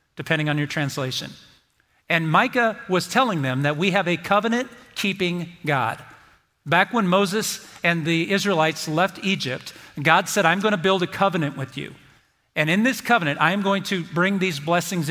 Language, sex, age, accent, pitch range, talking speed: English, male, 50-69, American, 150-195 Hz, 175 wpm